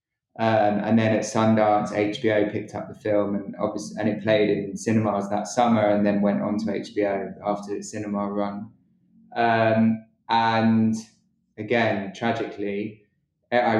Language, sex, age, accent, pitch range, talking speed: English, male, 20-39, British, 105-120 Hz, 150 wpm